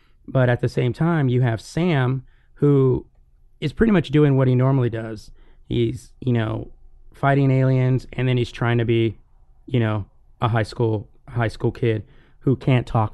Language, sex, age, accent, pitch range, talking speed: English, male, 30-49, American, 110-125 Hz, 180 wpm